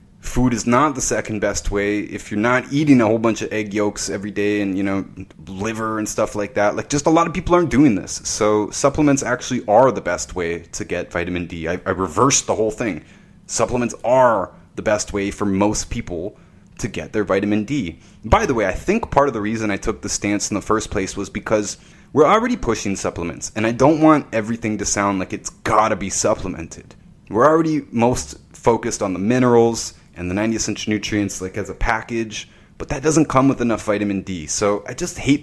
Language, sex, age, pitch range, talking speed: English, male, 30-49, 100-120 Hz, 220 wpm